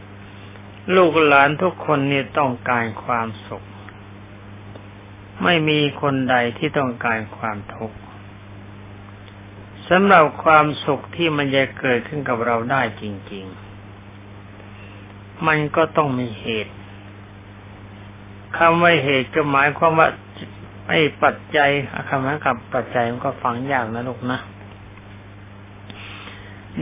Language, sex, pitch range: Thai, male, 100-140 Hz